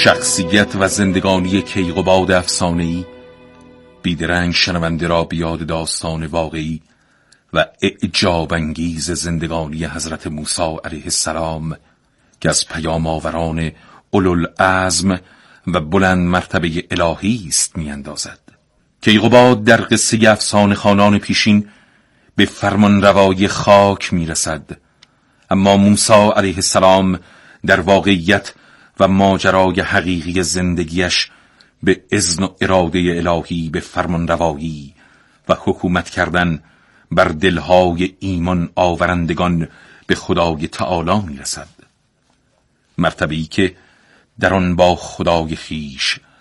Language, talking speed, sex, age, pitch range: Persian, 100 wpm, male, 40-59, 80-95 Hz